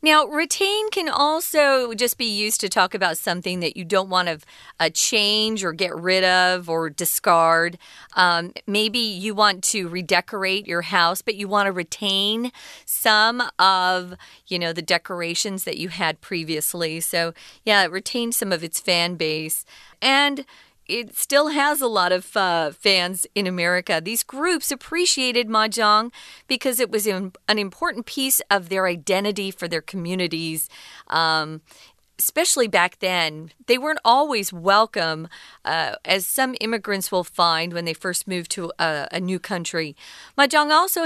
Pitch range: 175-245 Hz